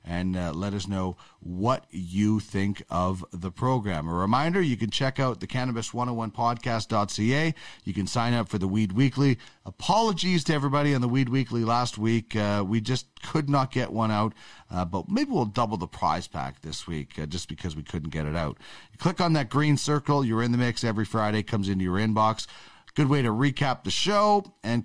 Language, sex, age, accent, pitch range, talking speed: English, male, 40-59, American, 95-135 Hz, 210 wpm